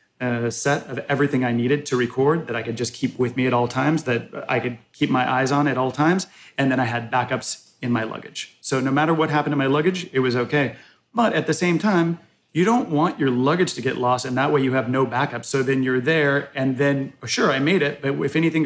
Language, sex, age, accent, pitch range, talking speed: English, male, 30-49, American, 125-145 Hz, 255 wpm